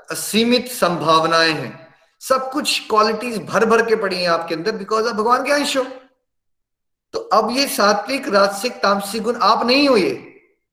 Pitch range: 175-230 Hz